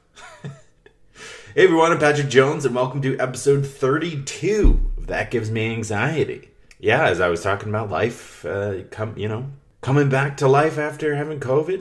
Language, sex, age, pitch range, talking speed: English, male, 30-49, 85-130 Hz, 170 wpm